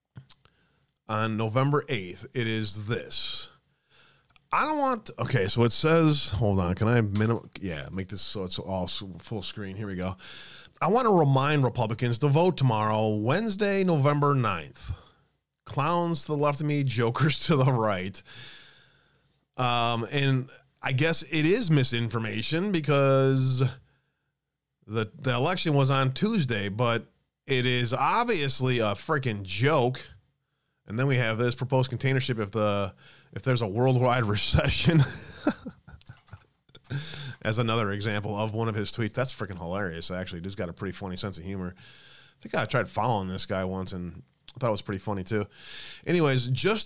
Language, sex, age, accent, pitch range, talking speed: English, male, 30-49, American, 105-140 Hz, 160 wpm